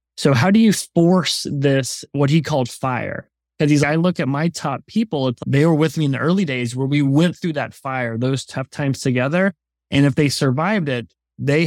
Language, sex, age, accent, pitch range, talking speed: English, male, 20-39, American, 125-165 Hz, 210 wpm